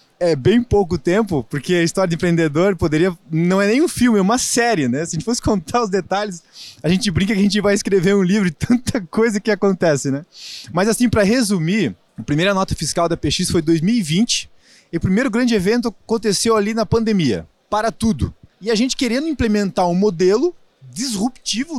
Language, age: Portuguese, 20-39